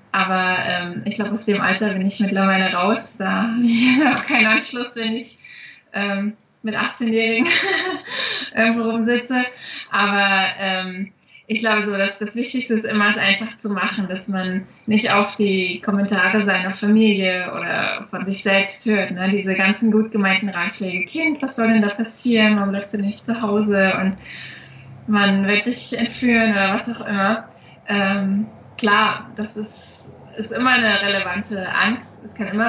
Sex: female